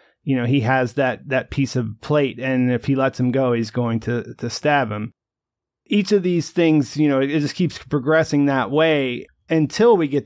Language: English